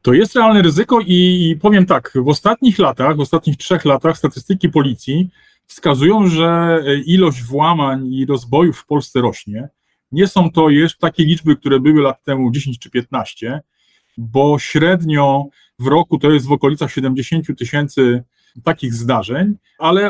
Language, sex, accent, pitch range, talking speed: Polish, male, native, 130-170 Hz, 150 wpm